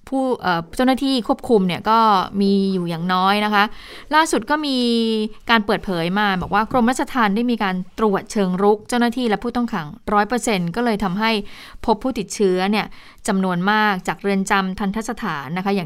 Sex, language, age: female, Thai, 20-39